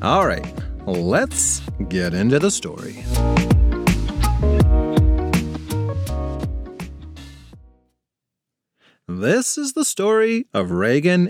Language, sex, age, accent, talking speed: English, male, 30-49, American, 65 wpm